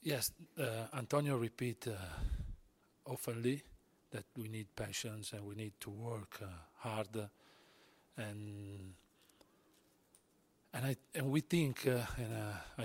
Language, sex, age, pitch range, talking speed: English, male, 40-59, 110-130 Hz, 120 wpm